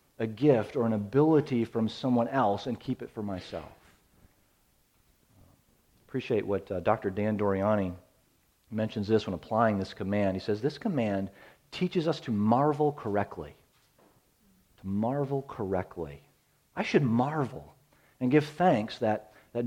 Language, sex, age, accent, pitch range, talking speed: English, male, 40-59, American, 100-140 Hz, 135 wpm